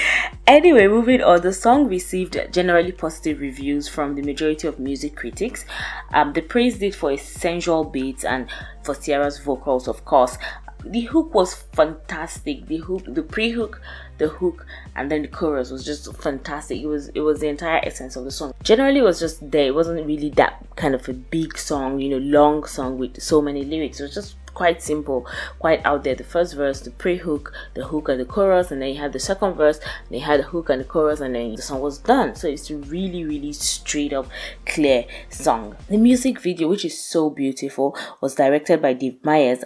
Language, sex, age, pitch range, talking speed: English, female, 20-39, 140-170 Hz, 210 wpm